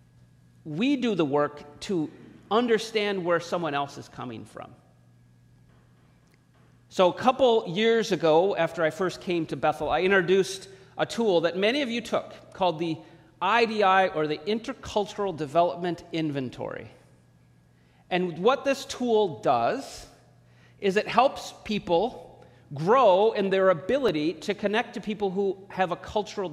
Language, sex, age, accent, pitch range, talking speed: English, male, 40-59, American, 150-205 Hz, 140 wpm